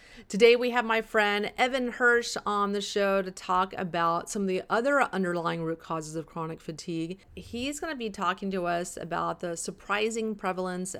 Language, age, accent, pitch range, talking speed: English, 40-59, American, 170-205 Hz, 185 wpm